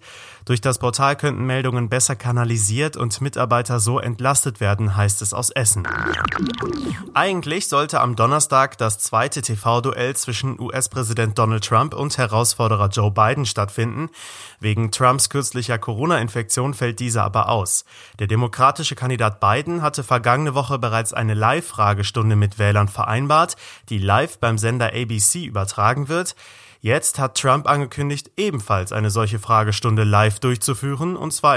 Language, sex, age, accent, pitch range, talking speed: German, male, 30-49, German, 110-140 Hz, 135 wpm